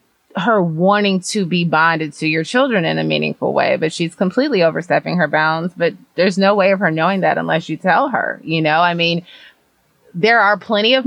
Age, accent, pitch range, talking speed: 20-39, American, 160-215 Hz, 205 wpm